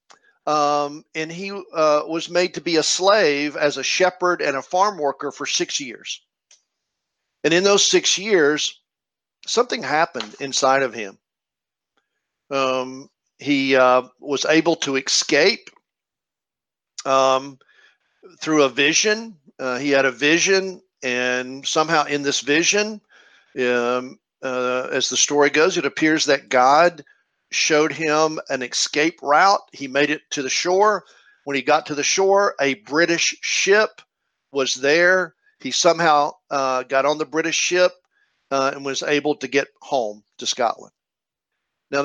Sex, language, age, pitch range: male, English, 50-69, 135-170 Hz